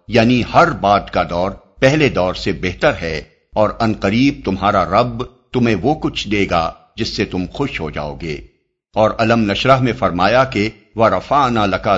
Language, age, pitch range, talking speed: Urdu, 50-69, 95-120 Hz, 175 wpm